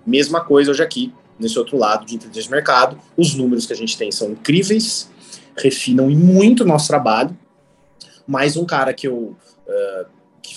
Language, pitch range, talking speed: Portuguese, 135-215 Hz, 175 wpm